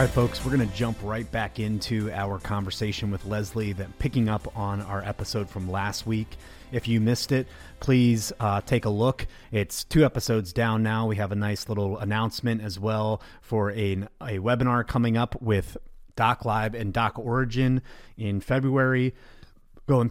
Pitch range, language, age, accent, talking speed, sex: 105-130 Hz, English, 30-49, American, 170 wpm, male